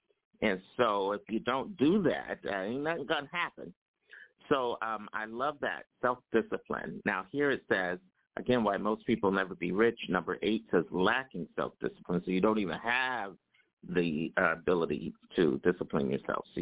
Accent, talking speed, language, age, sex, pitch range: American, 170 wpm, English, 50-69, male, 100-130 Hz